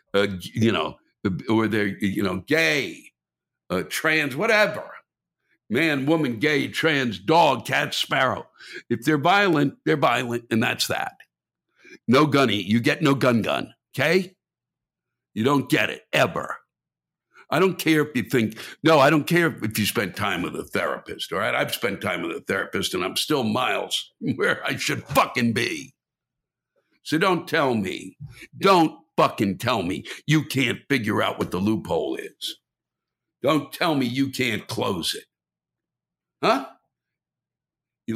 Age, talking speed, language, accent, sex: 60-79, 155 wpm, English, American, male